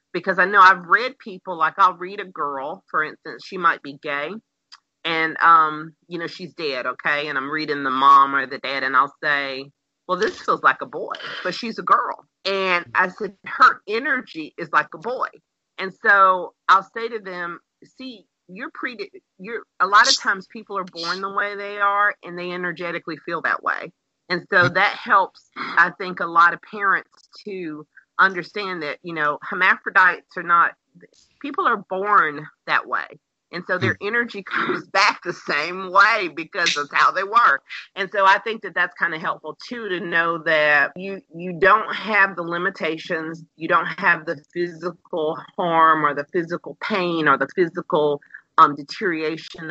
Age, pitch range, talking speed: 40-59, 150-195 Hz, 185 wpm